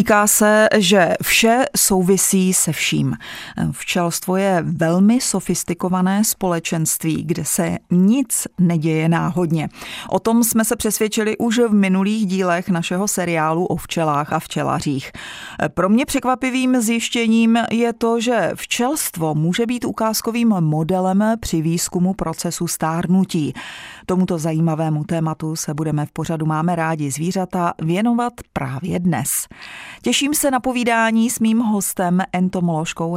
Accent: native